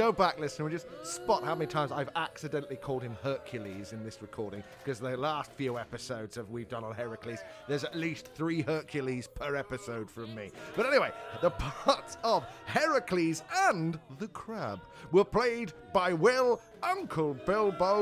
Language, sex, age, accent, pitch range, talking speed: English, male, 30-49, British, 130-205 Hz, 170 wpm